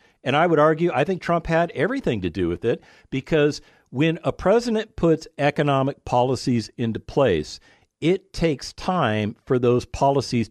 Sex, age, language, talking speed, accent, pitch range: male, 50-69, English, 160 wpm, American, 105-150 Hz